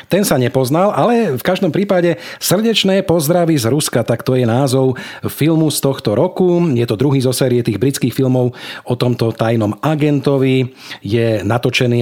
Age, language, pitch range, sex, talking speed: 40-59, Slovak, 115-150 Hz, male, 165 wpm